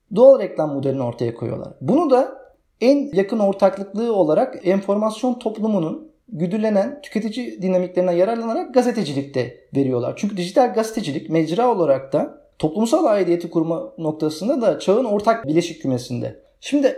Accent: native